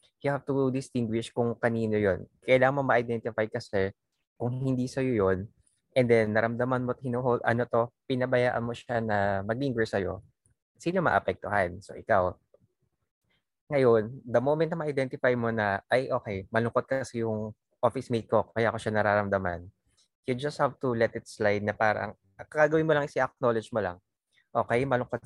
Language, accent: English, Filipino